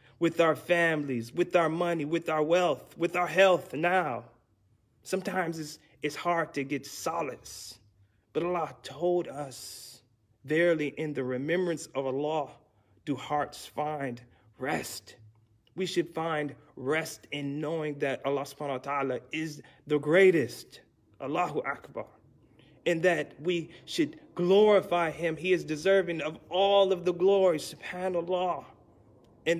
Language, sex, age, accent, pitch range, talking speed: English, male, 30-49, American, 140-175 Hz, 135 wpm